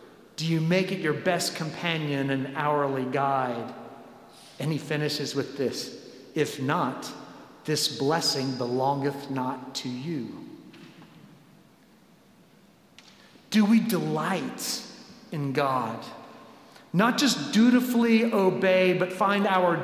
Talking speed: 105 wpm